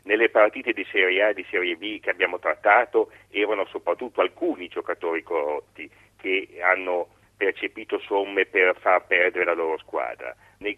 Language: Italian